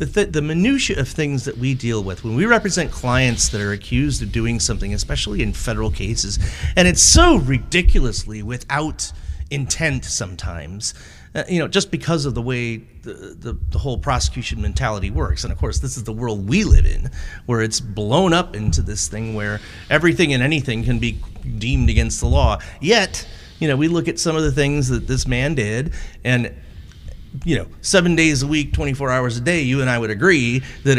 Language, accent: English, American